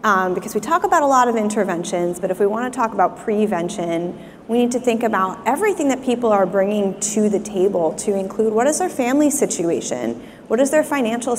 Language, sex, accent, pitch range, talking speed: English, female, American, 195-230 Hz, 215 wpm